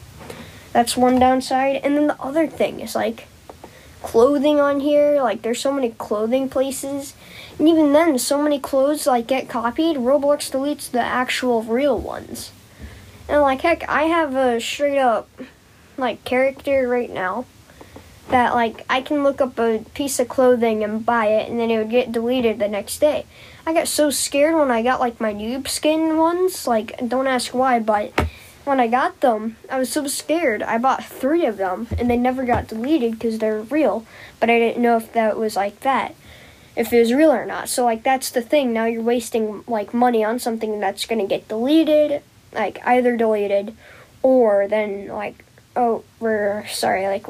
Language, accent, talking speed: English, American, 185 wpm